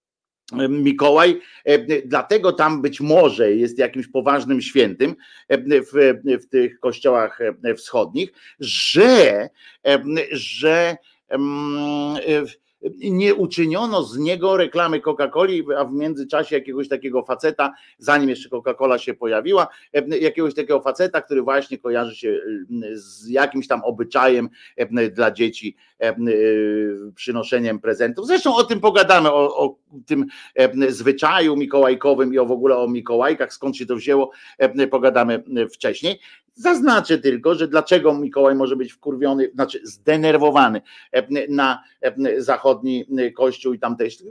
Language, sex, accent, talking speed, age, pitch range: Polish, male, native, 110 wpm, 50-69, 135-190 Hz